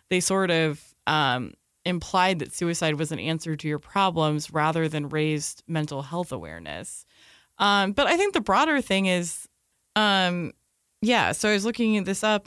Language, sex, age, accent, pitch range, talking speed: English, female, 20-39, American, 160-205 Hz, 175 wpm